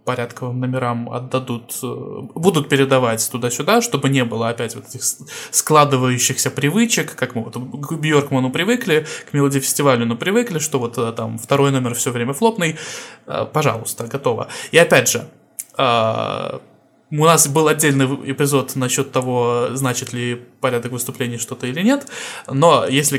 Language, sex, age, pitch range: Russian, male, 20-39, 125-155 Hz